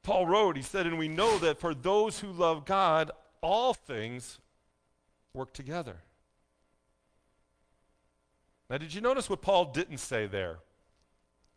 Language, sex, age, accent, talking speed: English, male, 40-59, American, 135 wpm